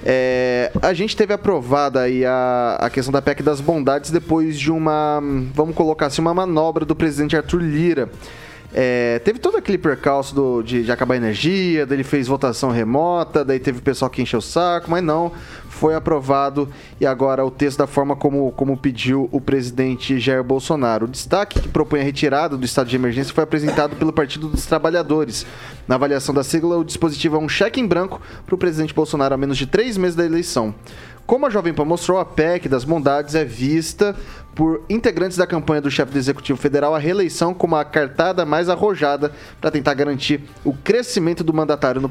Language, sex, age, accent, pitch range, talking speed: Portuguese, male, 20-39, Brazilian, 135-165 Hz, 190 wpm